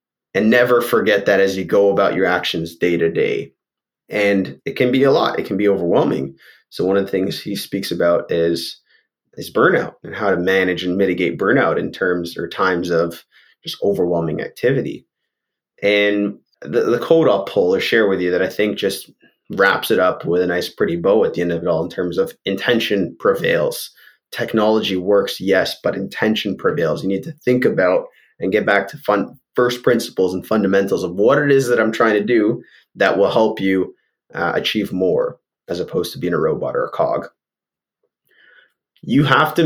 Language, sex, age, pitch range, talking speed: English, male, 20-39, 95-140 Hz, 195 wpm